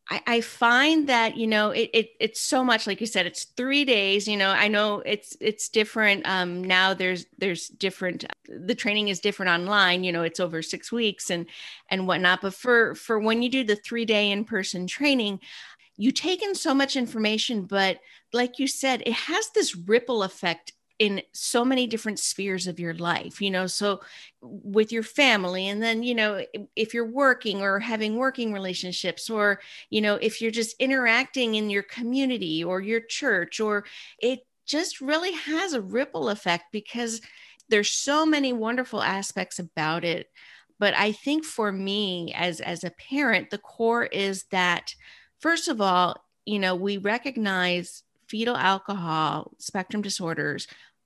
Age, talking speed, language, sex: 40-59, 175 wpm, English, female